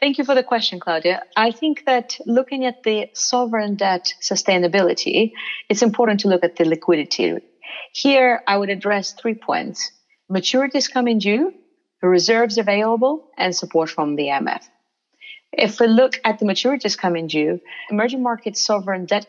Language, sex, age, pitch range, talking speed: English, female, 30-49, 185-235 Hz, 160 wpm